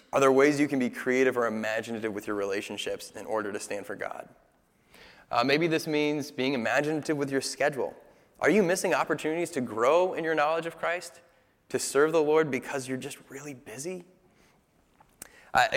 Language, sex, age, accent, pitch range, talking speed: English, male, 20-39, American, 115-155 Hz, 185 wpm